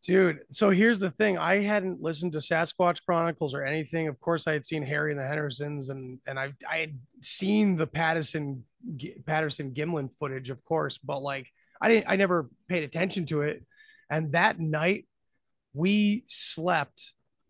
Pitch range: 145-190 Hz